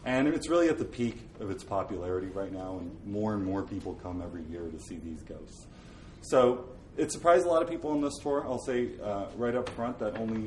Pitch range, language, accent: 90-115 Hz, English, American